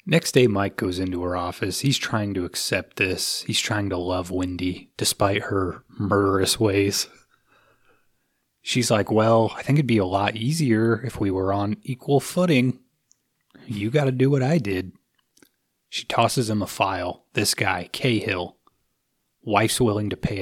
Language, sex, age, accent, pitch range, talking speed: English, male, 30-49, American, 95-125 Hz, 165 wpm